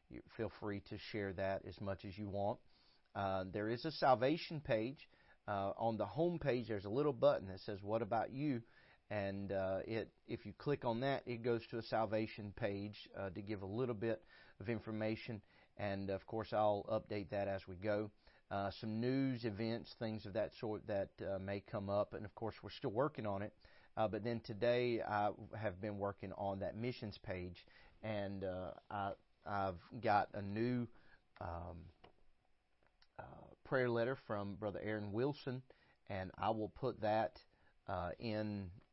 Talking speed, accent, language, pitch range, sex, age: 175 wpm, American, English, 100-125 Hz, male, 40-59